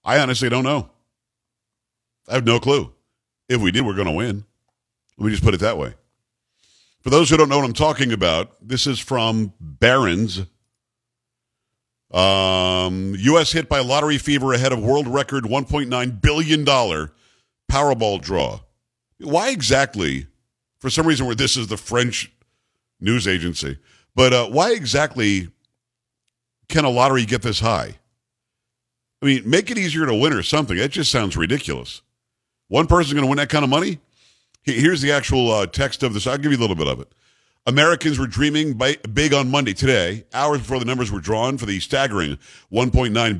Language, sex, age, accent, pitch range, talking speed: English, male, 50-69, American, 110-140 Hz, 175 wpm